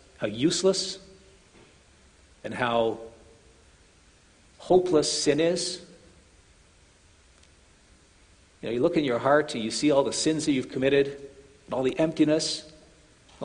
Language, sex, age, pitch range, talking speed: English, male, 50-69, 105-150 Hz, 125 wpm